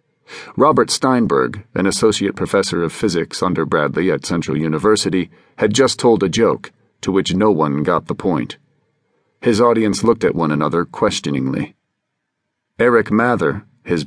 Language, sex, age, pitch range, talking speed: English, male, 40-59, 85-115 Hz, 145 wpm